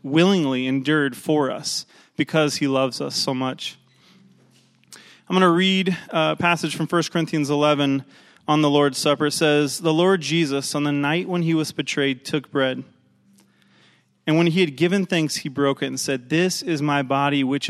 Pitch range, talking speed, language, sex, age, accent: 130-155 Hz, 185 wpm, English, male, 30-49, American